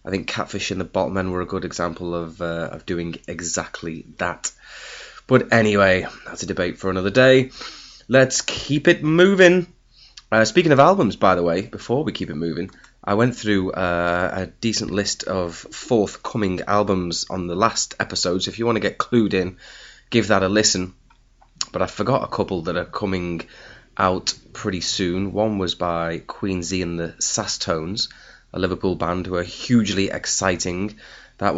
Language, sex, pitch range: English, male, 85-105 Hz